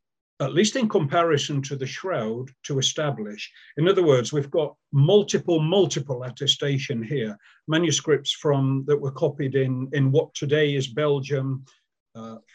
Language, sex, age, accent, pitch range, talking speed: English, male, 50-69, British, 120-150 Hz, 145 wpm